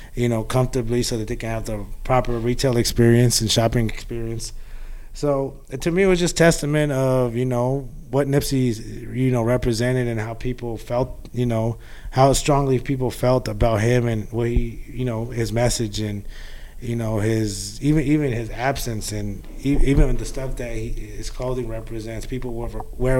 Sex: male